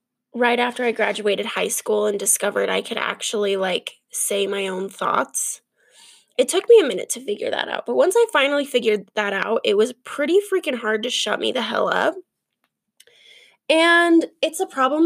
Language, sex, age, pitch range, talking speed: English, female, 10-29, 220-330 Hz, 185 wpm